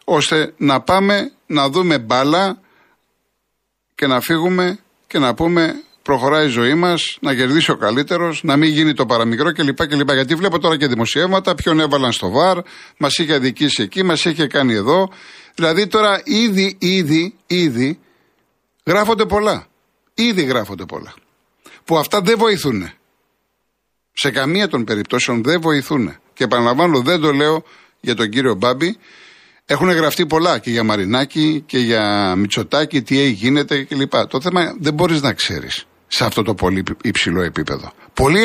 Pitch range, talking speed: 130-185 Hz, 155 wpm